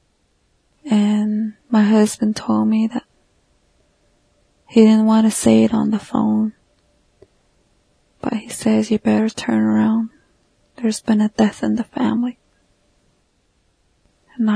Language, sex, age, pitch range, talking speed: English, female, 20-39, 215-235 Hz, 125 wpm